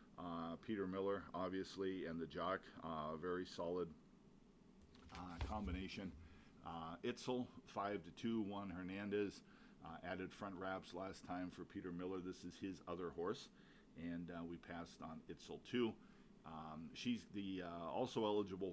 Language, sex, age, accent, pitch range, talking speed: English, male, 40-59, American, 85-100 Hz, 145 wpm